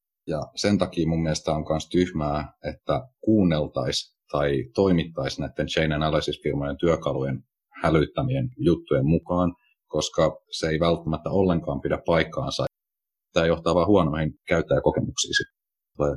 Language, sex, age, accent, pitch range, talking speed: Finnish, male, 30-49, native, 75-90 Hz, 120 wpm